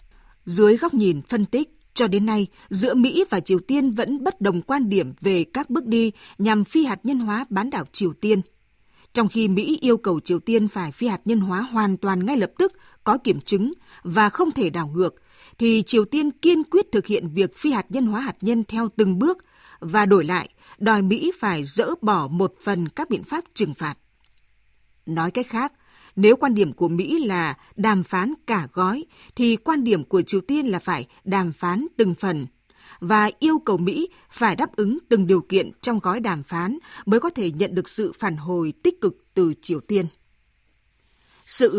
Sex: female